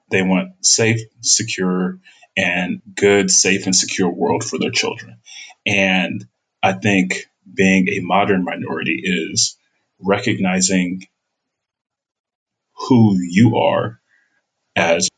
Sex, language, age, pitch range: male, English, 30-49, 90-100 Hz